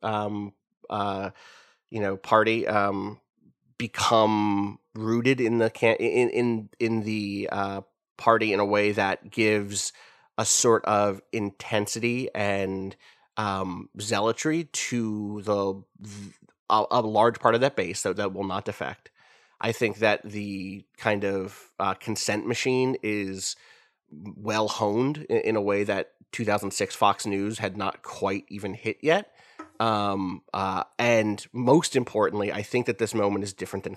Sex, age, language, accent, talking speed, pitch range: male, 30-49, English, American, 145 wpm, 100-115 Hz